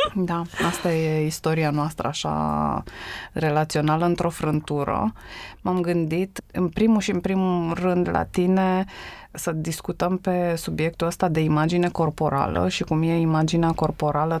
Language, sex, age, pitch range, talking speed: Romanian, female, 20-39, 155-185 Hz, 135 wpm